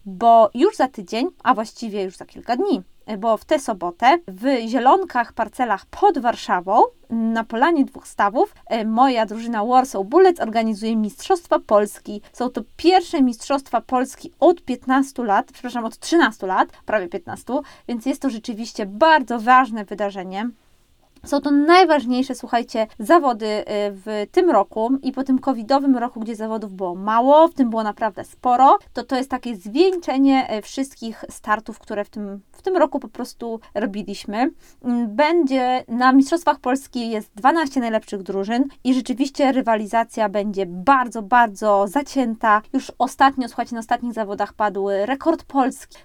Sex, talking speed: female, 145 wpm